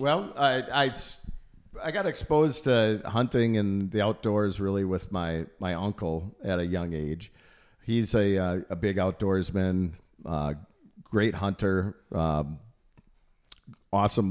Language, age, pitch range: English, 50-69, 90-110 Hz